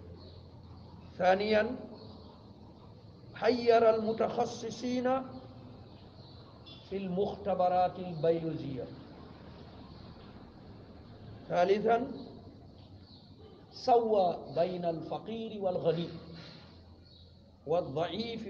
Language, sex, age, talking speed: French, male, 50-69, 40 wpm